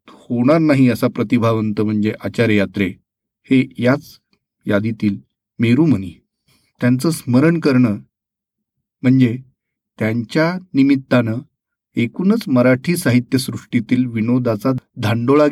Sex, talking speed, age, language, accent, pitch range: male, 85 wpm, 40-59, Marathi, native, 120-160 Hz